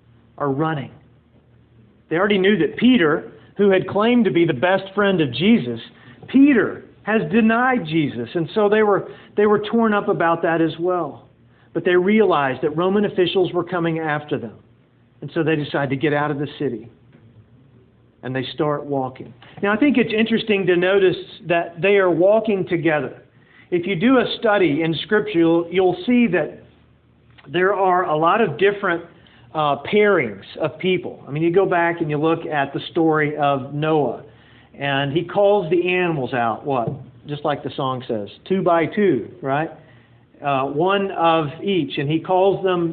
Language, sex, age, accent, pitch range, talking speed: English, male, 40-59, American, 145-190 Hz, 180 wpm